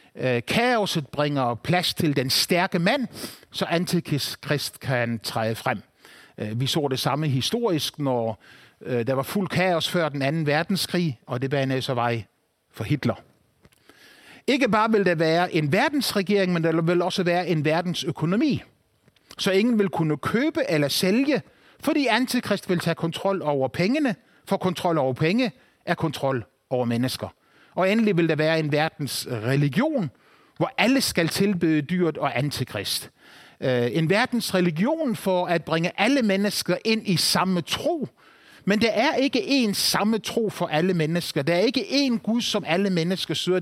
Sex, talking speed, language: male, 155 wpm, Danish